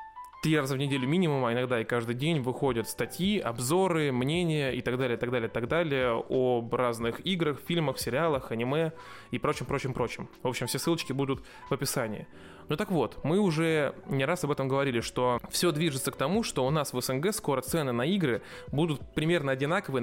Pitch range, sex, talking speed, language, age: 125-165 Hz, male, 195 wpm, Russian, 20-39